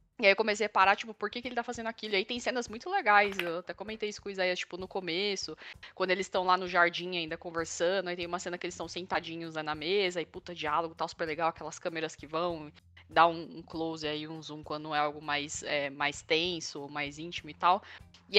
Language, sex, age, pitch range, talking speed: Portuguese, female, 10-29, 170-205 Hz, 260 wpm